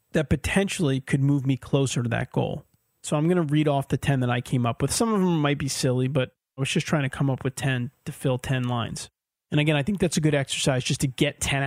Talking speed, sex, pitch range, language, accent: 280 wpm, male, 130-160 Hz, English, American